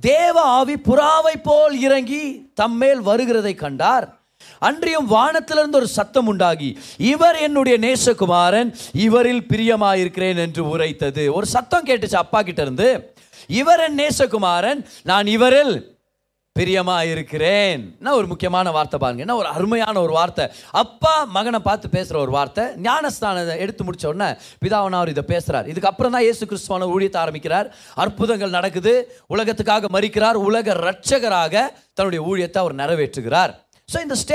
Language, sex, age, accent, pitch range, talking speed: Tamil, male, 30-49, native, 180-265 Hz, 60 wpm